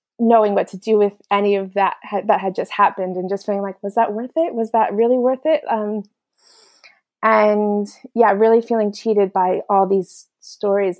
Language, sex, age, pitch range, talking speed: English, female, 20-39, 195-220 Hz, 190 wpm